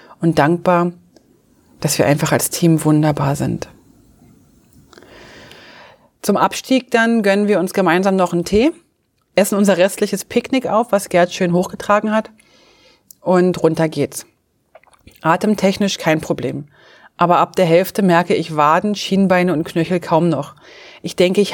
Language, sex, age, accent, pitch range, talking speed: German, female, 30-49, German, 160-205 Hz, 140 wpm